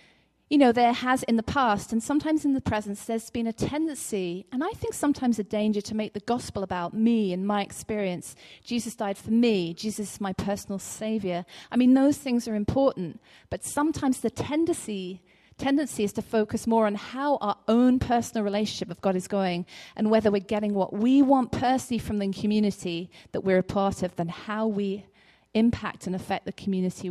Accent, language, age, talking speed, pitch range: British, English, 40-59, 195 wpm, 195-255 Hz